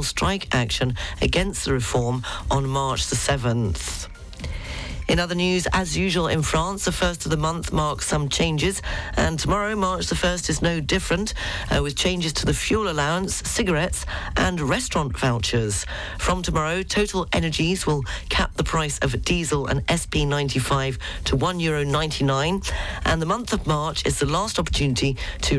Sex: female